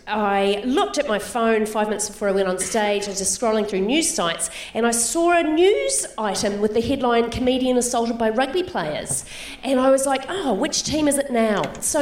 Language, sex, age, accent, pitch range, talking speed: English, female, 30-49, Australian, 215-290 Hz, 220 wpm